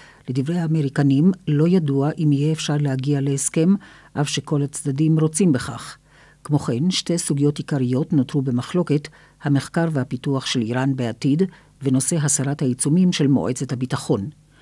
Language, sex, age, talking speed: Hebrew, female, 50-69, 130 wpm